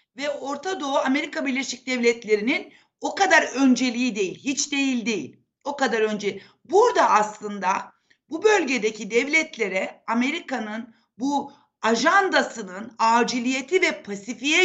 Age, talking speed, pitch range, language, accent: 60-79, 110 wpm, 220-295 Hz, Turkish, native